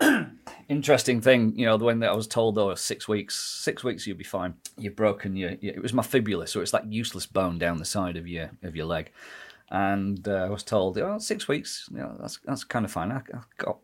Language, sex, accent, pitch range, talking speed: English, male, British, 90-125 Hz, 245 wpm